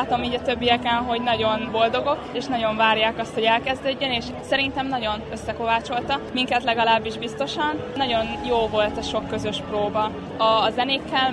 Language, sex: Hungarian, female